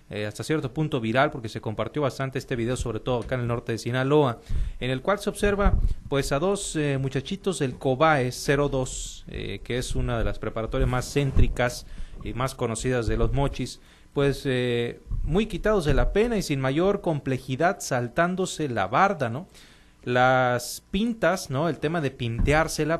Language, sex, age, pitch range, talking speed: Spanish, male, 40-59, 115-155 Hz, 180 wpm